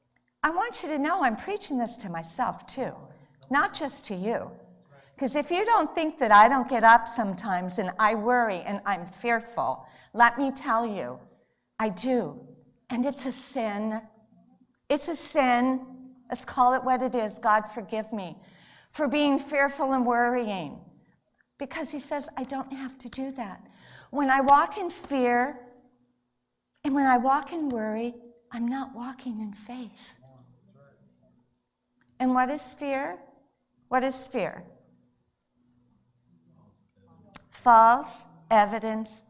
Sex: female